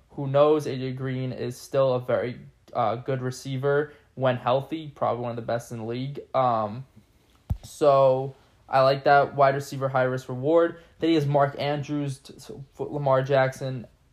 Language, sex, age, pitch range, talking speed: English, male, 20-39, 120-145 Hz, 155 wpm